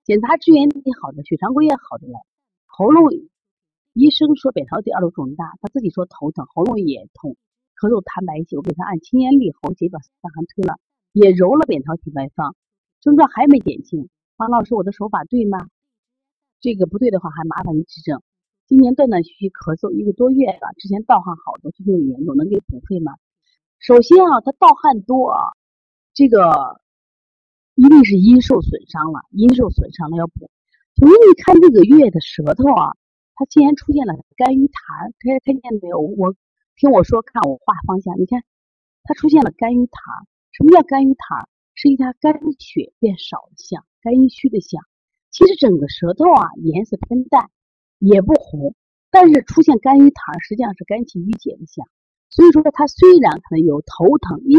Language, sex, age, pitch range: Chinese, female, 30-49, 180-285 Hz